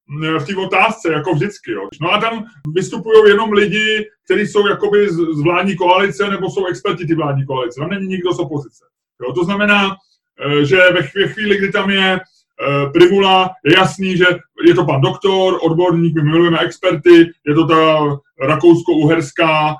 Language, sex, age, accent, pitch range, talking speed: Czech, male, 30-49, native, 160-200 Hz, 165 wpm